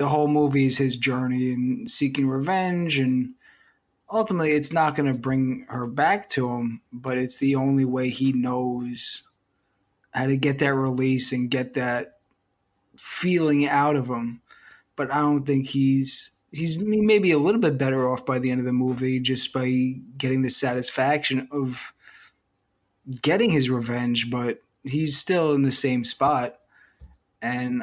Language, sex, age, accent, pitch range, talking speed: English, male, 20-39, American, 125-145 Hz, 160 wpm